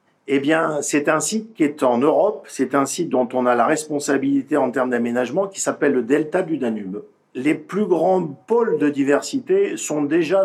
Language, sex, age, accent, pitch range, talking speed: English, male, 50-69, French, 135-180 Hz, 195 wpm